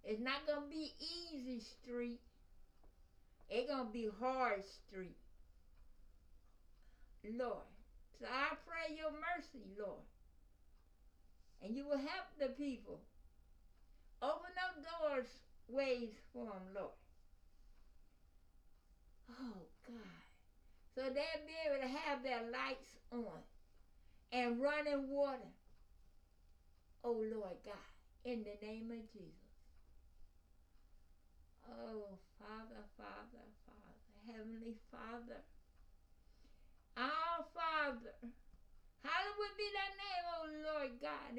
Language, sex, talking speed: English, female, 100 wpm